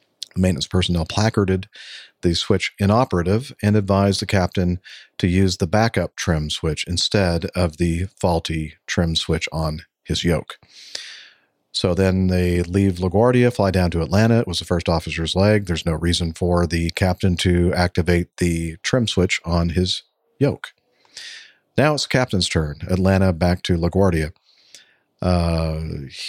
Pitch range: 85-100 Hz